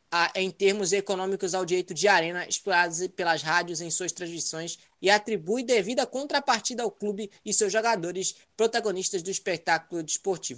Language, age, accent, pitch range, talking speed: Portuguese, 20-39, Brazilian, 185-245 Hz, 155 wpm